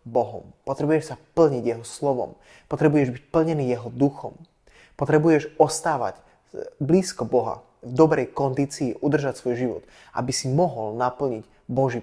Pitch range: 120-145 Hz